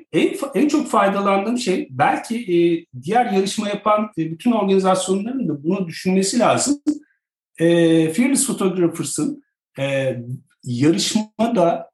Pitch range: 165-255 Hz